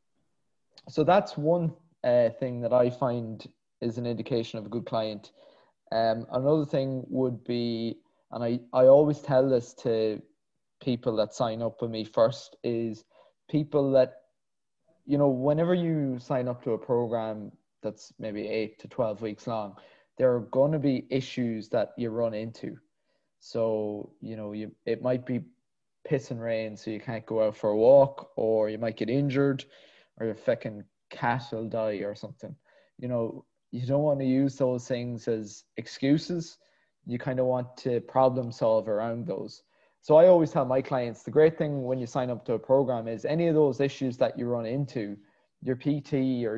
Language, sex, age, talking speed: English, male, 20-39, 180 wpm